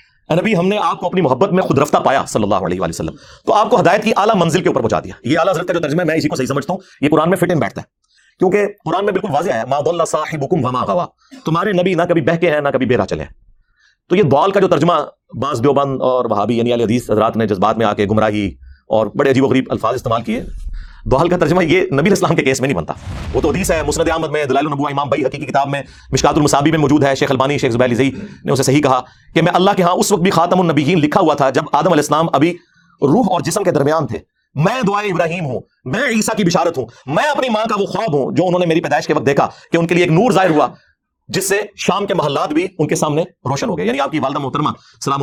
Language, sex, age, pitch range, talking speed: Urdu, male, 40-59, 140-185 Hz, 270 wpm